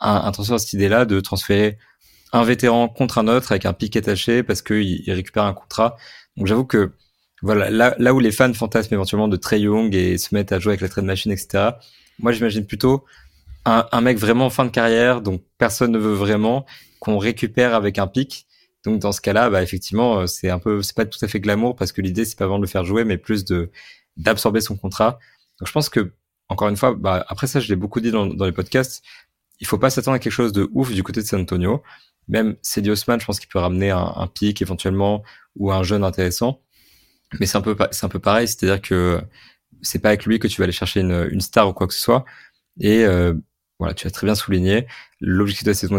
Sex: male